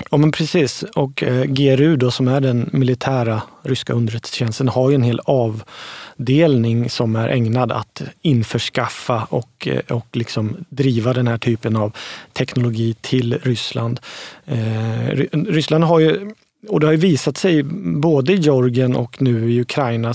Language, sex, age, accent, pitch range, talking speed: Swedish, male, 30-49, native, 120-150 Hz, 160 wpm